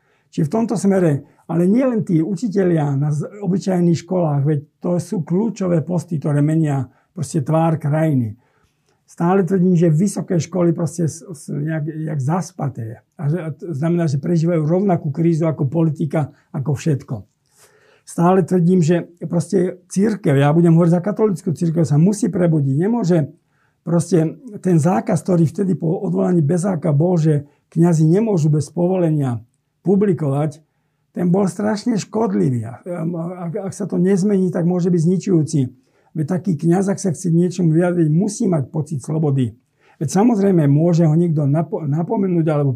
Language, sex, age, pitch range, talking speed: Slovak, male, 50-69, 150-185 Hz, 140 wpm